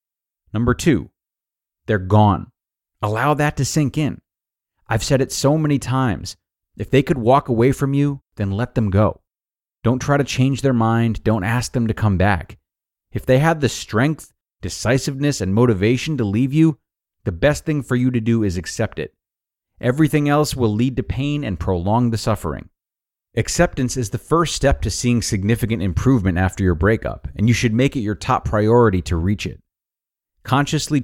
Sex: male